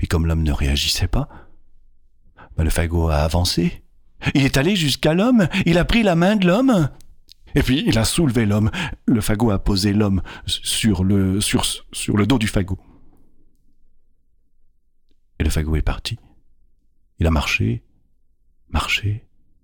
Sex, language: male, French